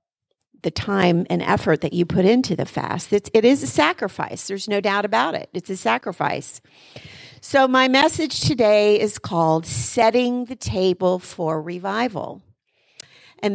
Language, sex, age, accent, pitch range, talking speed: English, female, 50-69, American, 170-230 Hz, 150 wpm